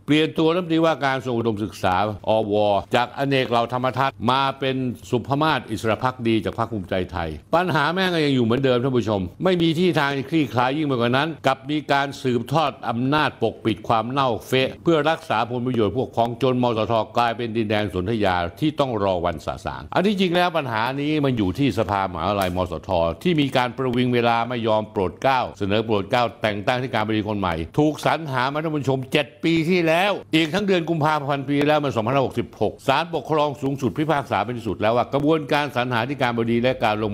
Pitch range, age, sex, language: 110-145 Hz, 60-79, male, Thai